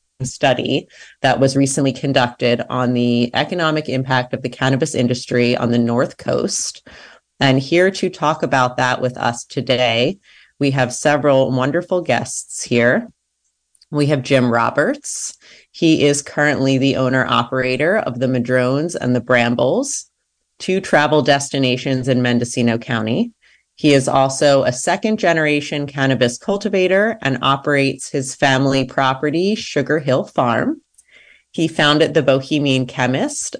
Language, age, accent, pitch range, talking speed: English, 30-49, American, 130-155 Hz, 130 wpm